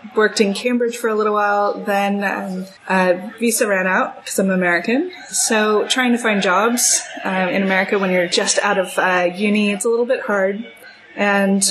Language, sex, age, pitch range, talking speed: English, female, 20-39, 175-210 Hz, 190 wpm